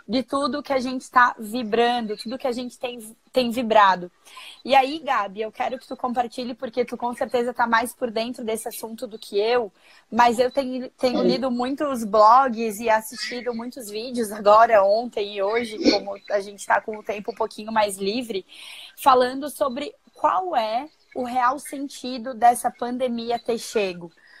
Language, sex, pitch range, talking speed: Portuguese, female, 225-265 Hz, 175 wpm